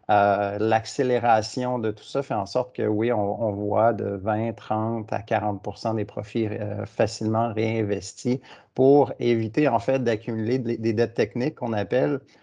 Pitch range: 105-115 Hz